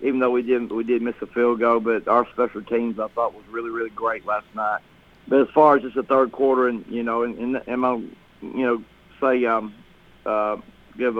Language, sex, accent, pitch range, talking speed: English, male, American, 115-130 Hz, 225 wpm